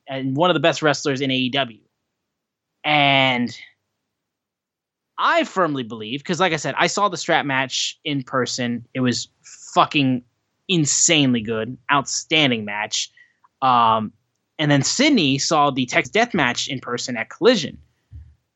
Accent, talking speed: American, 140 wpm